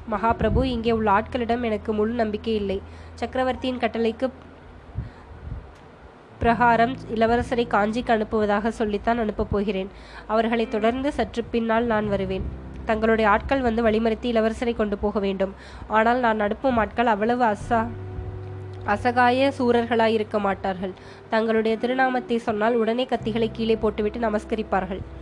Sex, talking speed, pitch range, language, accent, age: female, 115 wpm, 205-235 Hz, Tamil, native, 20-39